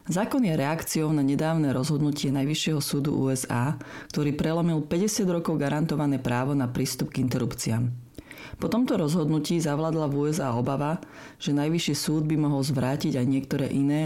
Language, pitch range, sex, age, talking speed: Slovak, 135-165 Hz, female, 40-59, 150 wpm